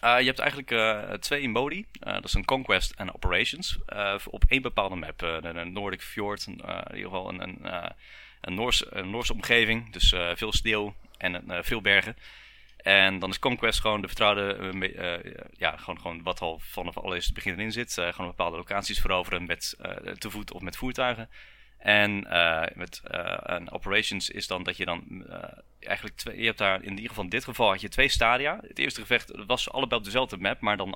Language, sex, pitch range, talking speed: Dutch, male, 90-115 Hz, 220 wpm